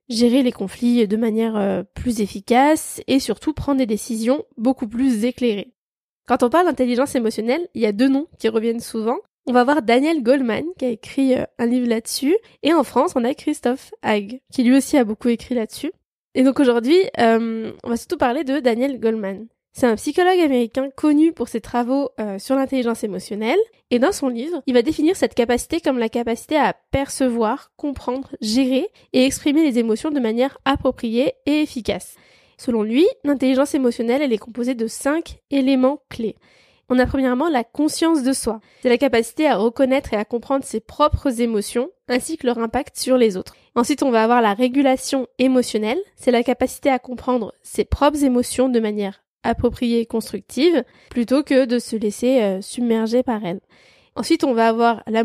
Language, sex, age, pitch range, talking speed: French, female, 20-39, 230-275 Hz, 185 wpm